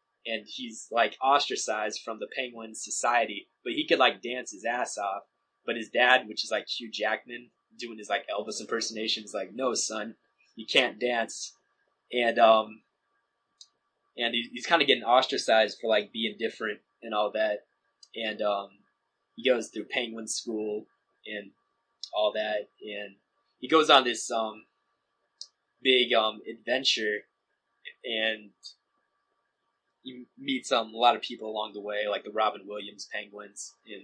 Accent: American